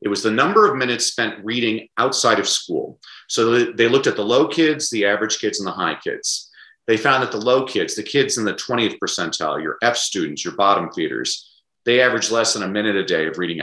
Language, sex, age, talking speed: English, male, 40-59, 235 wpm